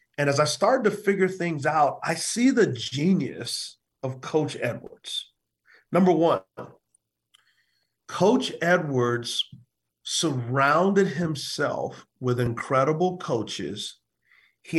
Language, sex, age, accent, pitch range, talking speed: English, male, 40-59, American, 130-175 Hz, 100 wpm